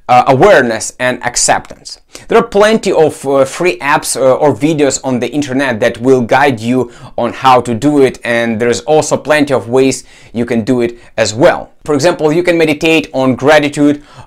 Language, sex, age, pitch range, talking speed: English, male, 30-49, 130-170 Hz, 190 wpm